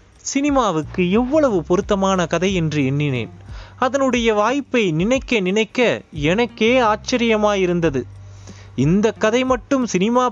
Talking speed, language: 95 wpm, Tamil